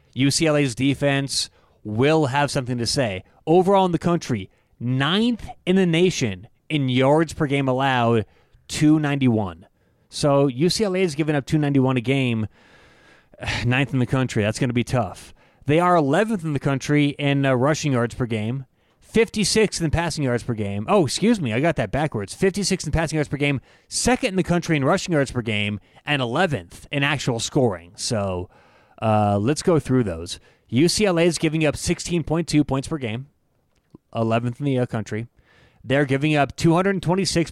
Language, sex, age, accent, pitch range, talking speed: English, male, 30-49, American, 120-165 Hz, 170 wpm